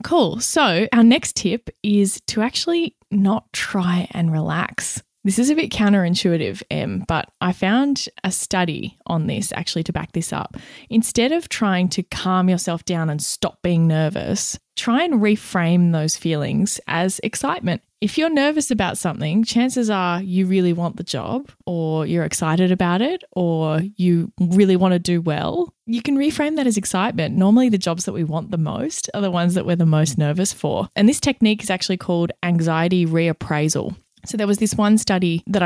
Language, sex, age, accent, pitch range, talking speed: English, female, 20-39, Australian, 170-210 Hz, 185 wpm